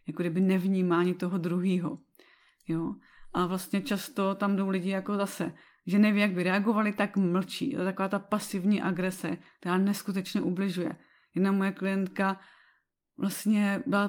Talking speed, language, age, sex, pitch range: 150 wpm, Czech, 30-49, female, 185-205 Hz